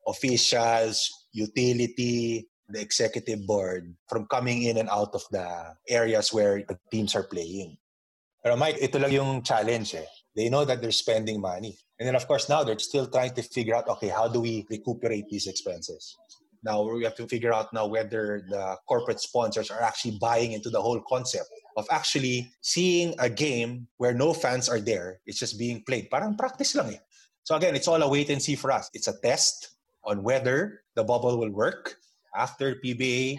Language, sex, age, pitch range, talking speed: English, male, 20-39, 110-135 Hz, 190 wpm